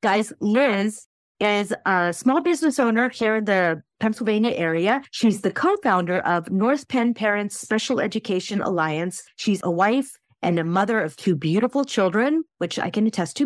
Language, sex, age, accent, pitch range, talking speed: English, female, 40-59, American, 175-220 Hz, 165 wpm